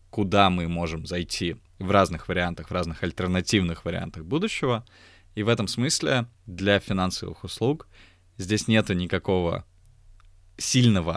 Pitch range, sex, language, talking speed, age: 90-115 Hz, male, Russian, 125 wpm, 20-39